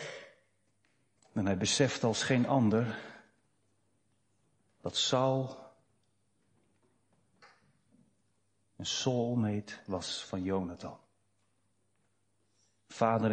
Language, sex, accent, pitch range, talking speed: Dutch, male, Dutch, 100-125 Hz, 65 wpm